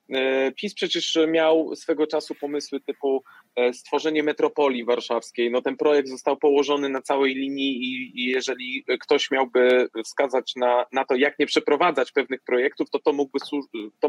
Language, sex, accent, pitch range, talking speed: Polish, male, native, 125-160 Hz, 140 wpm